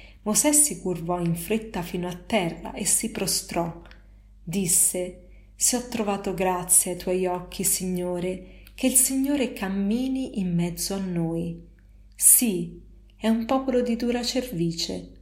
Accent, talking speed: native, 140 wpm